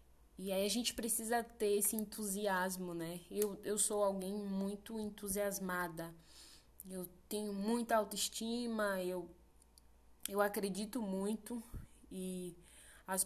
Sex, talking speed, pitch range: female, 115 wpm, 185-230 Hz